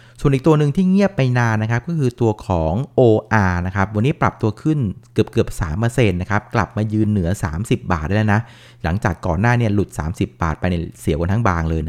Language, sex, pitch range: Thai, male, 95-120 Hz